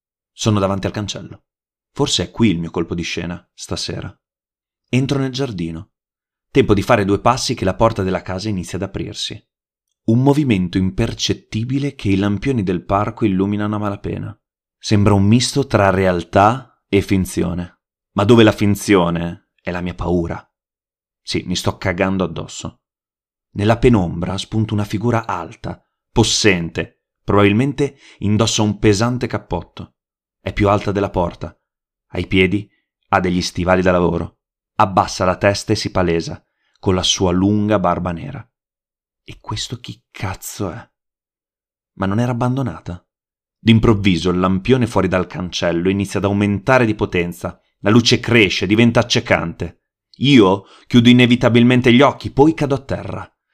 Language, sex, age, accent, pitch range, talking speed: Italian, male, 30-49, native, 95-115 Hz, 145 wpm